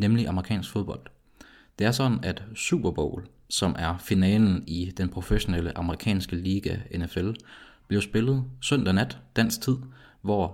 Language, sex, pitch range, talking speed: Danish, male, 90-110 Hz, 140 wpm